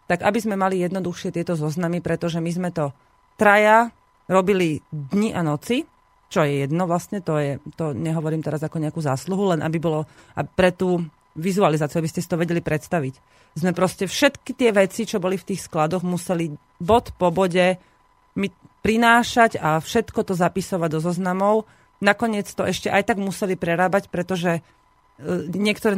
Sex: female